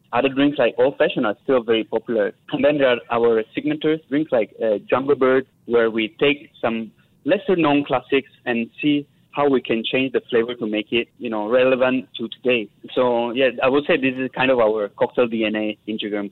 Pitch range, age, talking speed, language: 110-135 Hz, 20-39, 200 wpm, English